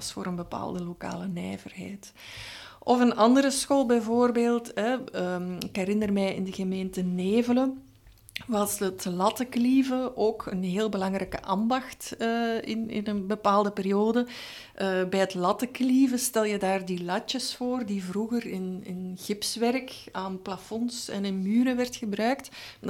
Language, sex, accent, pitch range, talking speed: Dutch, female, Dutch, 195-235 Hz, 145 wpm